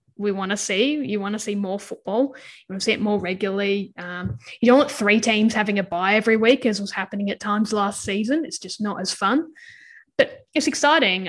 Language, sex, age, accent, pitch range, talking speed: English, female, 10-29, Australian, 195-230 Hz, 230 wpm